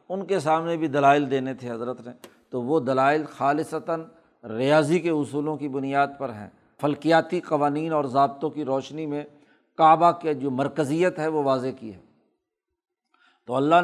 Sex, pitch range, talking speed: male, 140-170 Hz, 165 wpm